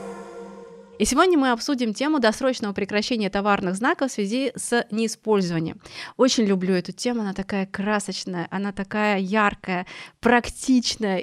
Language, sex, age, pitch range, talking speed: Russian, female, 30-49, 185-235 Hz, 130 wpm